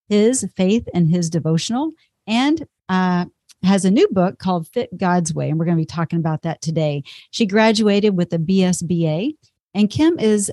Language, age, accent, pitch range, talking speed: English, 40-59, American, 170-210 Hz, 180 wpm